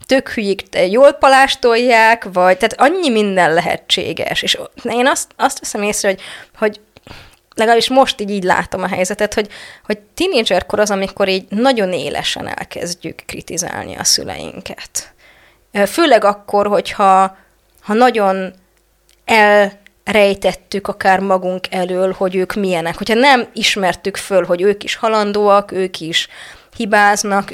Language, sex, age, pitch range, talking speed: Hungarian, female, 20-39, 185-225 Hz, 130 wpm